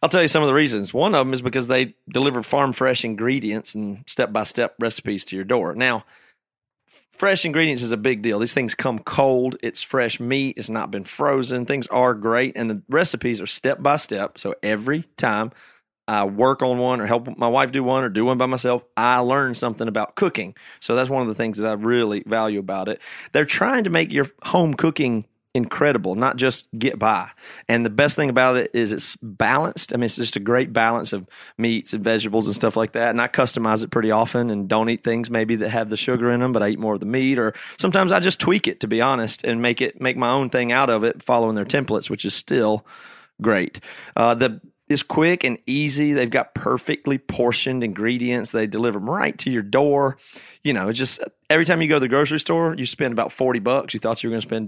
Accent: American